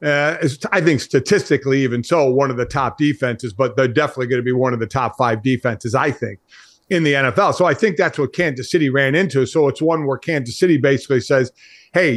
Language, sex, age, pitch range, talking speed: English, male, 50-69, 125-160 Hz, 225 wpm